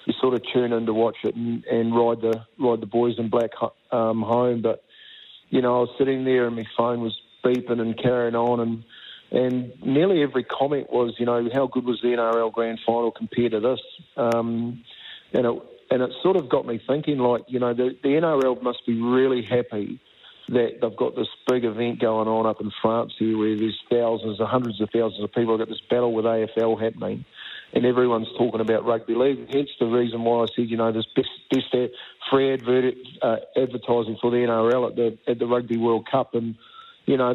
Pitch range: 115-125 Hz